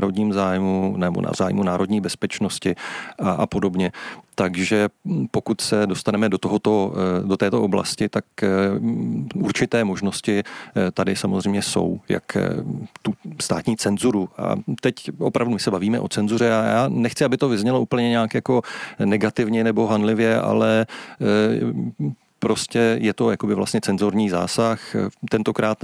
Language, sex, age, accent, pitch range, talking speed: Czech, male, 40-59, native, 95-115 Hz, 135 wpm